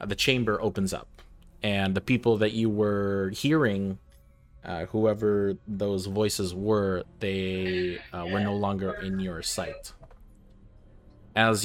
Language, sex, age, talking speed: English, male, 20-39, 130 wpm